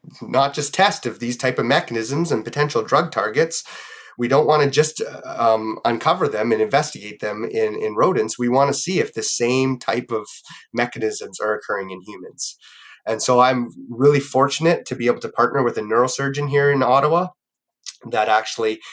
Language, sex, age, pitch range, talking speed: English, male, 30-49, 115-145 Hz, 185 wpm